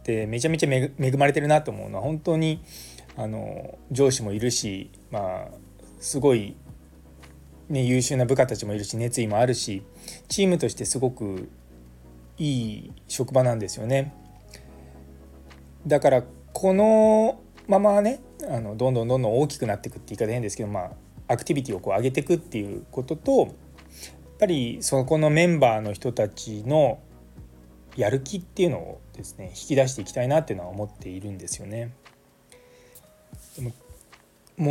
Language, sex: Japanese, male